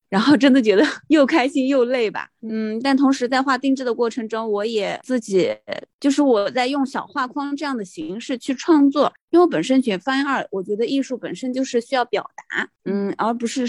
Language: Chinese